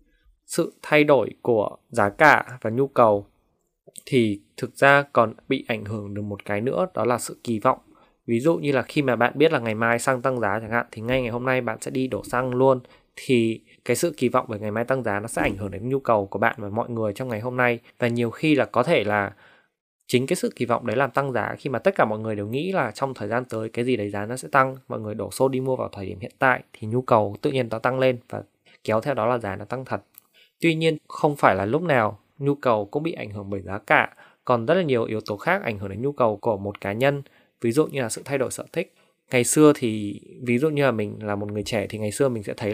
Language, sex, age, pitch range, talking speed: Vietnamese, male, 20-39, 110-135 Hz, 280 wpm